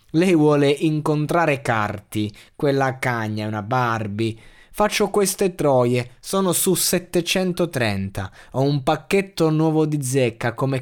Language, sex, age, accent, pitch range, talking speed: Italian, male, 20-39, native, 115-160 Hz, 120 wpm